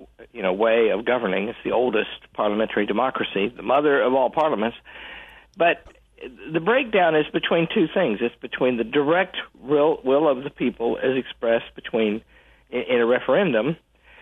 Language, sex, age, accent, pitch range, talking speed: English, male, 50-69, American, 130-180 Hz, 155 wpm